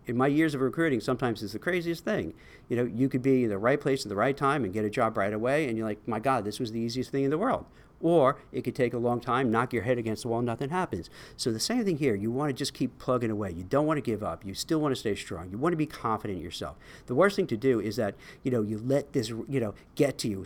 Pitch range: 115-150 Hz